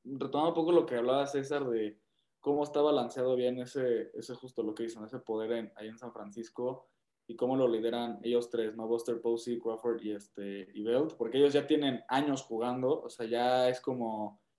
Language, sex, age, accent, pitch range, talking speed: Spanish, male, 20-39, Mexican, 115-135 Hz, 205 wpm